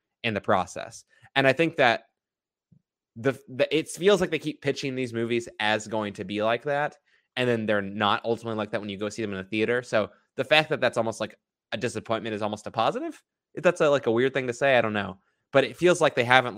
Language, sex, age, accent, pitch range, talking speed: English, male, 20-39, American, 105-135 Hz, 245 wpm